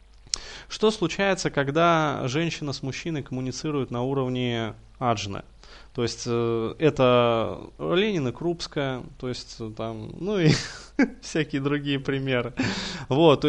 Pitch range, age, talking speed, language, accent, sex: 120-150 Hz, 20-39, 110 wpm, Russian, native, male